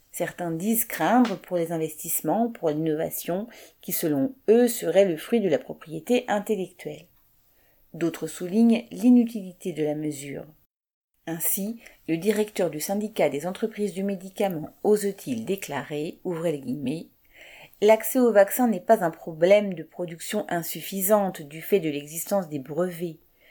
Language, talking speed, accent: French, 140 wpm, French